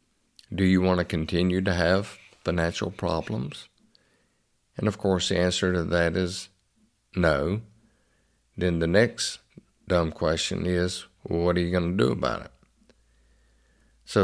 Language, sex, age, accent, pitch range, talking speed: English, male, 50-69, American, 85-95 Hz, 145 wpm